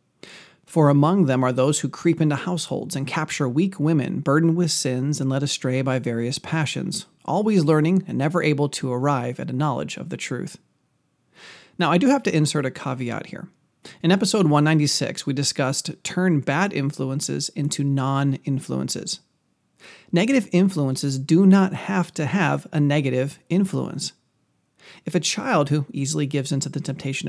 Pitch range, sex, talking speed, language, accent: 140-175 Hz, male, 160 wpm, English, American